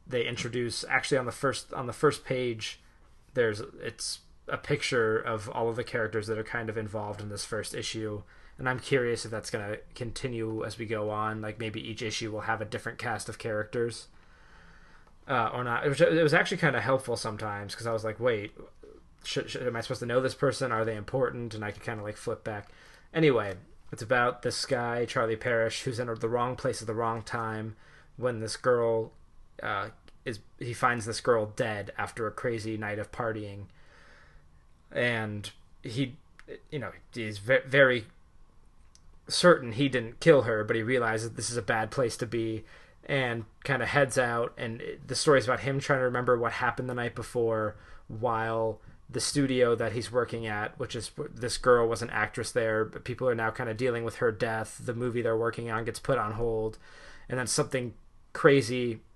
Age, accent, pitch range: 20-39, American, 110-125 Hz